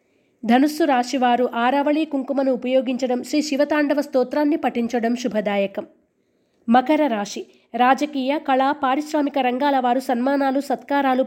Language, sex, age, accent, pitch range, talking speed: Telugu, female, 20-39, native, 235-285 Hz, 100 wpm